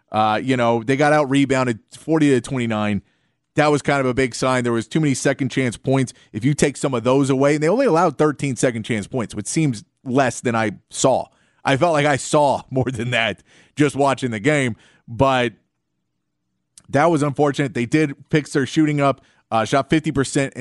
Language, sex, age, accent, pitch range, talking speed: English, male, 30-49, American, 125-145 Hz, 190 wpm